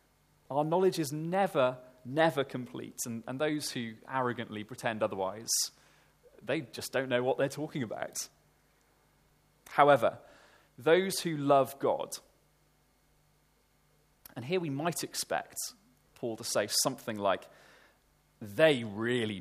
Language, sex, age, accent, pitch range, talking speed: English, male, 30-49, British, 120-160 Hz, 120 wpm